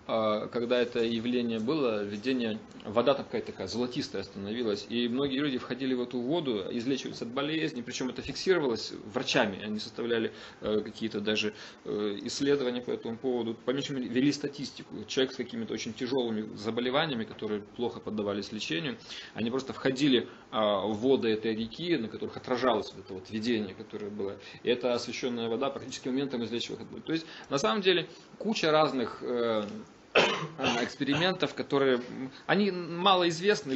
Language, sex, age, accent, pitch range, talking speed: Russian, male, 20-39, native, 110-140 Hz, 145 wpm